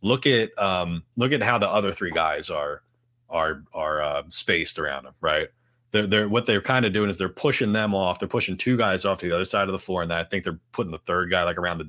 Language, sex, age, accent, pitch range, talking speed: English, male, 30-49, American, 85-120 Hz, 275 wpm